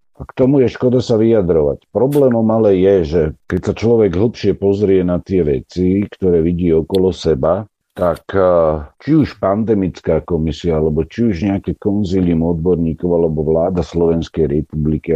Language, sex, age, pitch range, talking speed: Slovak, male, 50-69, 85-110 Hz, 150 wpm